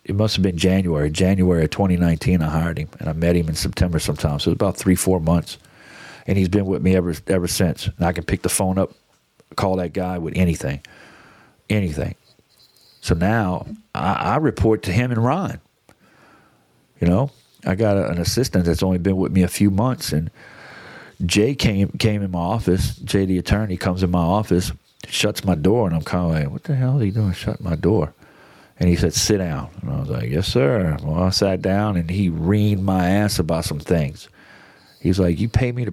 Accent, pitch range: American, 90-110 Hz